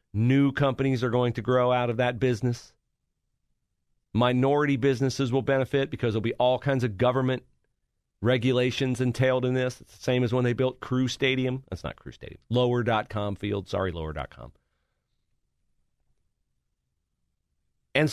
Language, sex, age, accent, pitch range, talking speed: English, male, 40-59, American, 110-140 Hz, 140 wpm